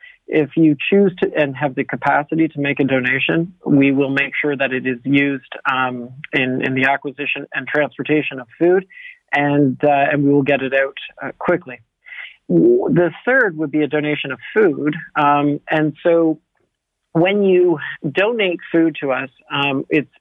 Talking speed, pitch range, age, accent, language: 175 wpm, 140-170 Hz, 40-59, American, English